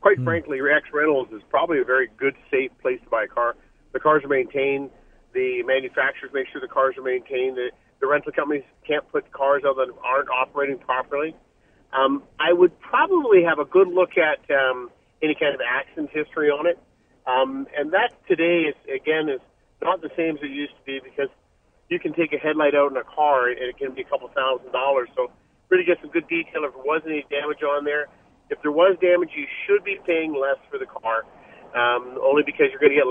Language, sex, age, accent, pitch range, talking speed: English, male, 40-59, American, 135-190 Hz, 220 wpm